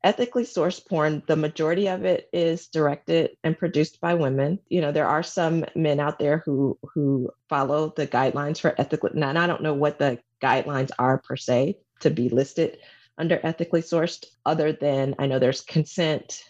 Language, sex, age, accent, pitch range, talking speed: English, female, 30-49, American, 135-165 Hz, 180 wpm